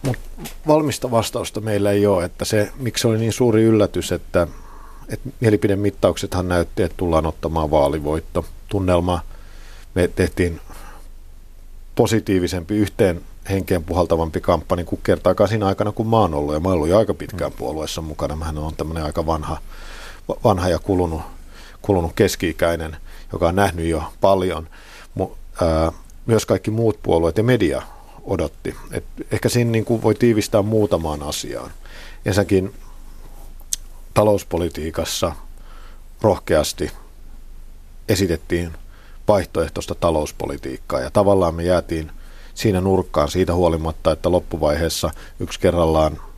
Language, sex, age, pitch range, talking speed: Finnish, male, 50-69, 80-100 Hz, 120 wpm